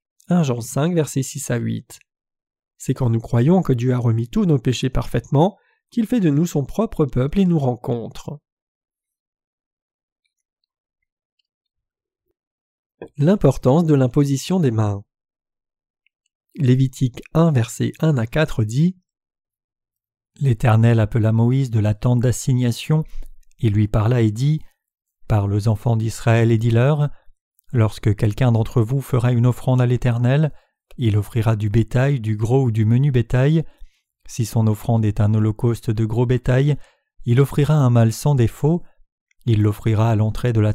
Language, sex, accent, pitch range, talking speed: French, male, French, 115-140 Hz, 145 wpm